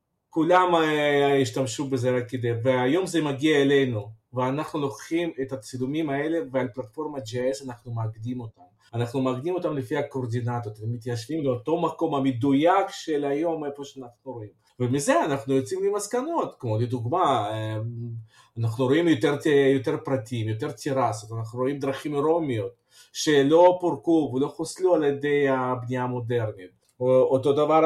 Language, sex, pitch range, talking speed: Hebrew, male, 120-150 Hz, 135 wpm